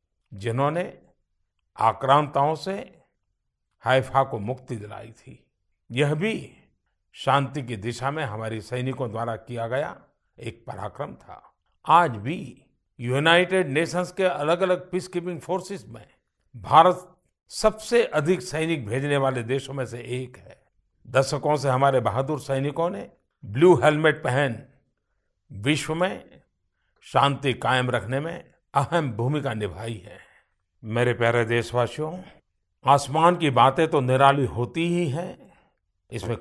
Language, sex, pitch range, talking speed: Hindi, male, 115-150 Hz, 120 wpm